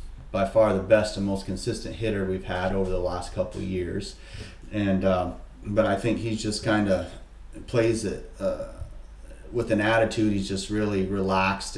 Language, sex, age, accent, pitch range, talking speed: English, male, 30-49, American, 90-110 Hz, 180 wpm